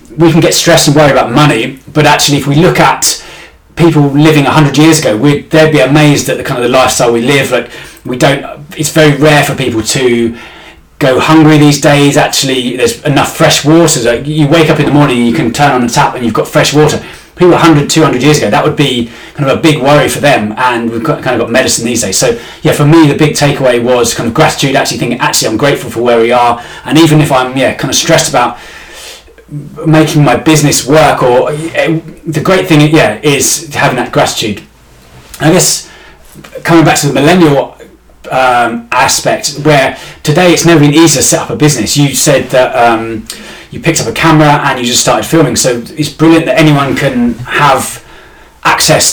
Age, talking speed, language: 20-39, 215 wpm, English